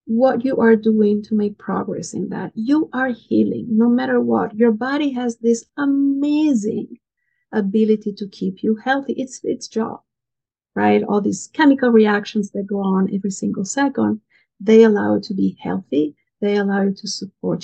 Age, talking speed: 50-69, 170 wpm